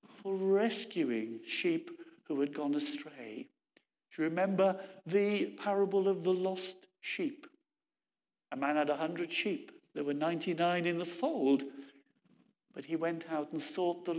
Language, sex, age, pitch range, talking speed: English, male, 60-79, 160-220 Hz, 140 wpm